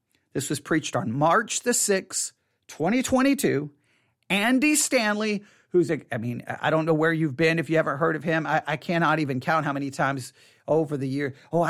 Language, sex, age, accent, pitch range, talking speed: English, male, 40-59, American, 155-205 Hz, 190 wpm